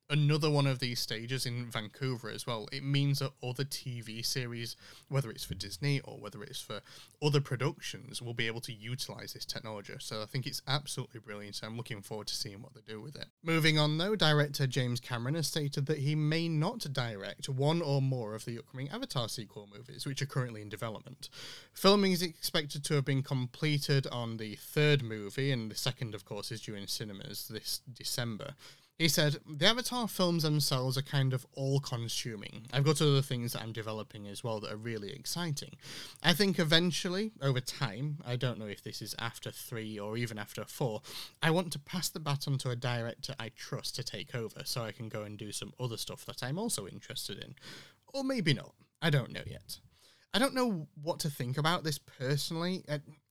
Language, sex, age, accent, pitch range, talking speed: English, male, 30-49, British, 115-150 Hz, 205 wpm